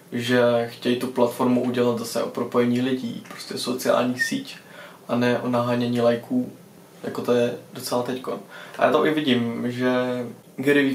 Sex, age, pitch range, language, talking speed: male, 20-39, 120-135 Hz, Czech, 160 wpm